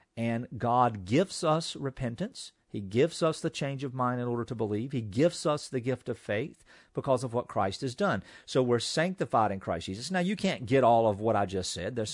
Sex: male